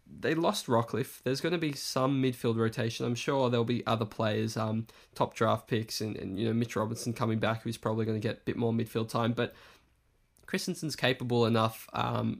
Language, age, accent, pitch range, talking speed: English, 20-39, Australian, 115-145 Hz, 205 wpm